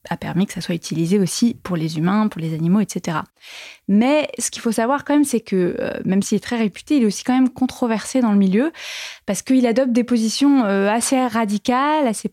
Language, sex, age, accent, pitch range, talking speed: French, female, 20-39, French, 195-245 Hz, 220 wpm